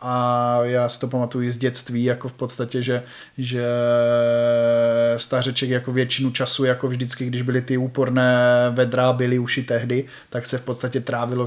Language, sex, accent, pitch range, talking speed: Czech, male, native, 120-125 Hz, 170 wpm